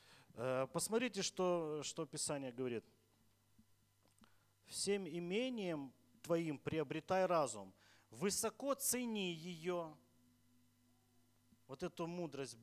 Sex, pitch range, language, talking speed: male, 120-200 Hz, Russian, 75 wpm